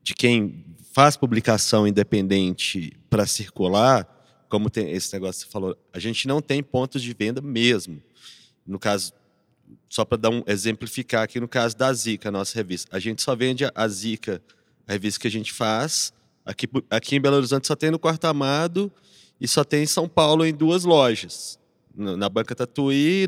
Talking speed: 185 wpm